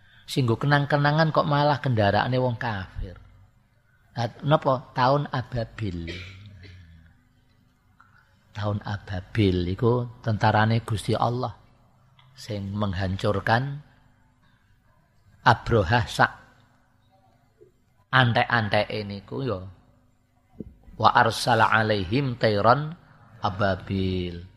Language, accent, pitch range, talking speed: Indonesian, native, 105-125 Hz, 75 wpm